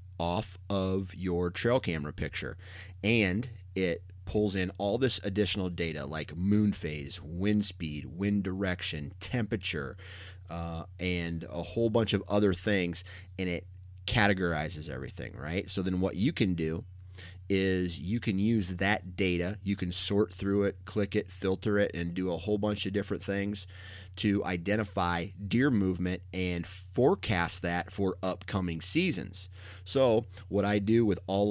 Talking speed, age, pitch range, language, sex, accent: 150 wpm, 30-49, 90-100 Hz, English, male, American